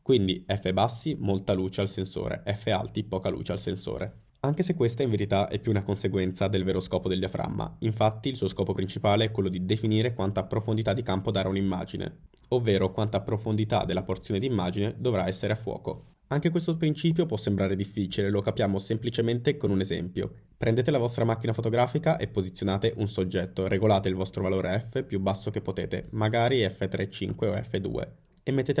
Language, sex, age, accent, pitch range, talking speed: Italian, male, 20-39, native, 95-115 Hz, 185 wpm